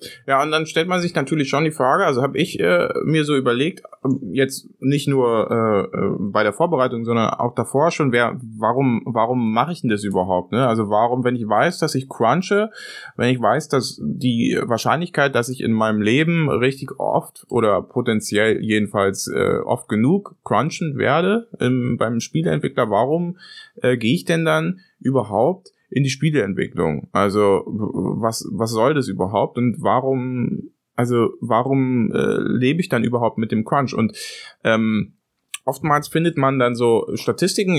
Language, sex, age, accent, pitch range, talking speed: German, male, 20-39, German, 110-145 Hz, 165 wpm